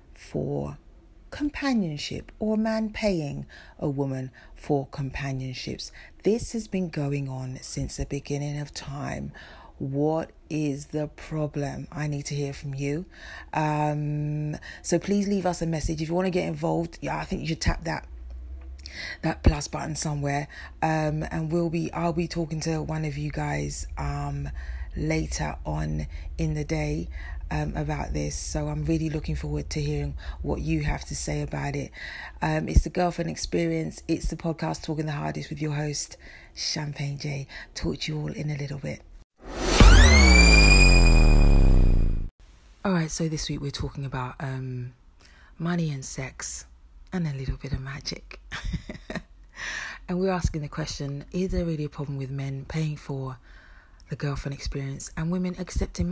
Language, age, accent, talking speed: English, 30-49, British, 160 wpm